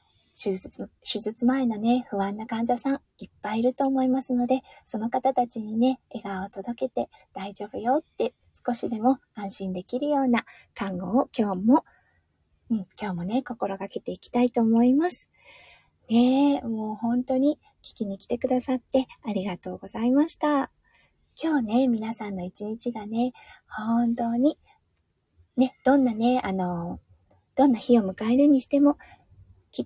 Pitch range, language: 215-270 Hz, Japanese